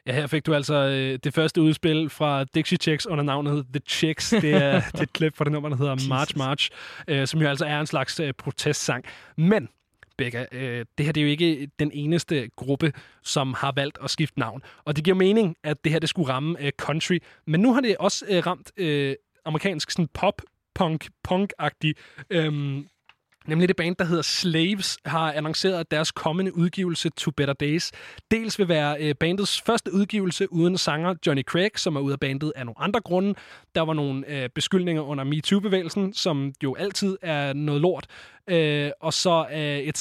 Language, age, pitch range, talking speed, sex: Danish, 20-39, 145-180 Hz, 195 wpm, male